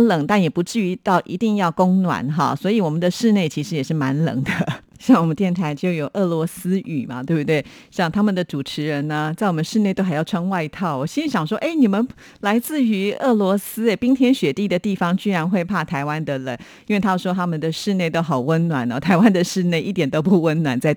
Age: 50-69